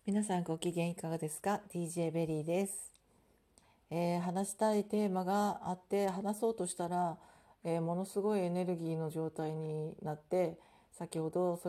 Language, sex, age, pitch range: Japanese, female, 40-59, 160-205 Hz